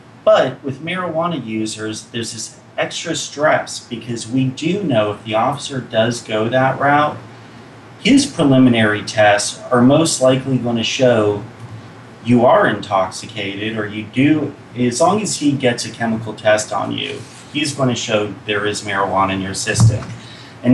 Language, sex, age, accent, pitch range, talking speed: English, male, 30-49, American, 105-130 Hz, 160 wpm